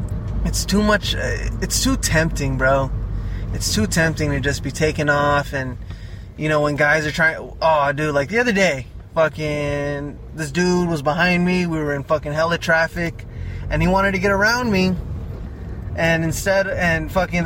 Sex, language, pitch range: male, English, 140-185 Hz